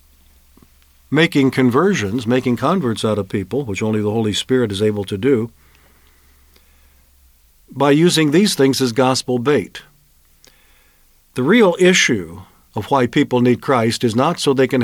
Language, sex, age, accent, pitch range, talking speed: English, male, 50-69, American, 105-155 Hz, 145 wpm